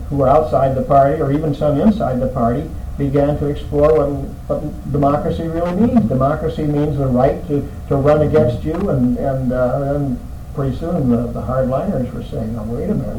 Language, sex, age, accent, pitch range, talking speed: English, male, 60-79, American, 115-140 Hz, 185 wpm